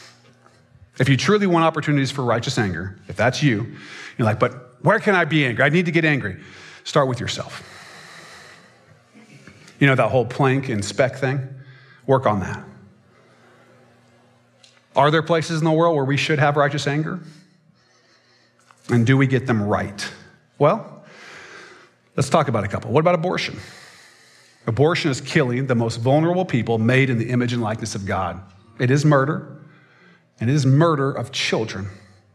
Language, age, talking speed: English, 40-59, 165 wpm